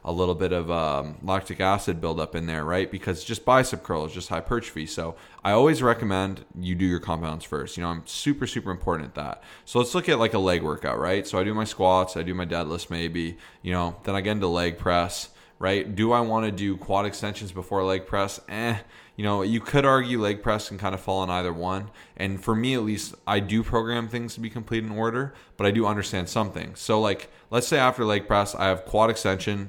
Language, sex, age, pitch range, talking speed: English, male, 20-39, 90-105 Hz, 235 wpm